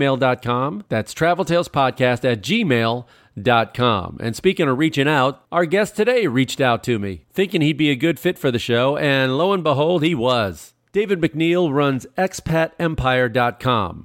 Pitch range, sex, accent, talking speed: 115-160 Hz, male, American, 150 wpm